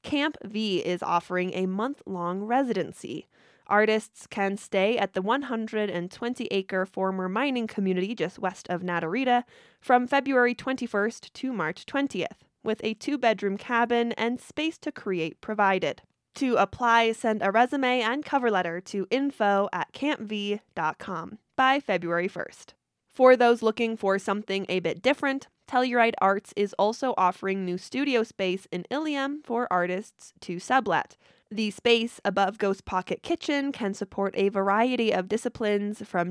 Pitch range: 190-245 Hz